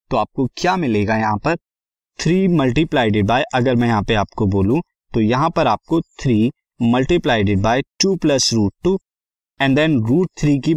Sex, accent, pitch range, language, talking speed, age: male, native, 115-165 Hz, Hindi, 165 wpm, 20-39